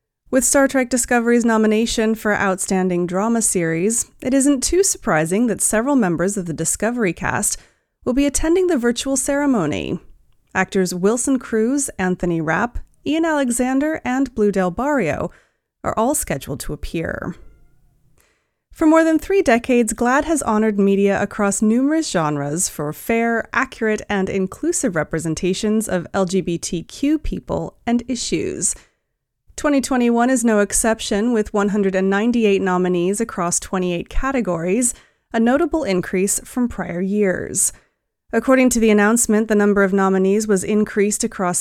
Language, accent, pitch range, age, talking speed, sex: English, American, 185-255 Hz, 30-49, 135 wpm, female